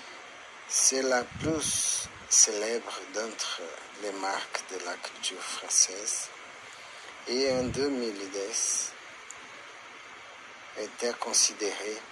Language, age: French, 50-69